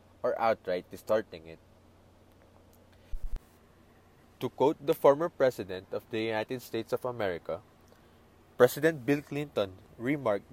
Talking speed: 110 wpm